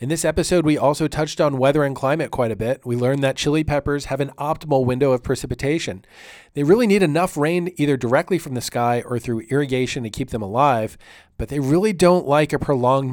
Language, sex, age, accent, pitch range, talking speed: English, male, 40-59, American, 120-145 Hz, 220 wpm